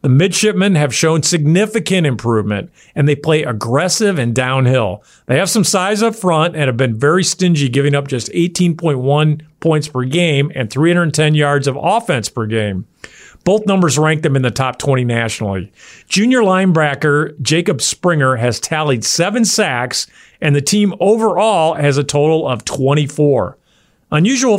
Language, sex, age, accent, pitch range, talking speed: English, male, 50-69, American, 130-175 Hz, 155 wpm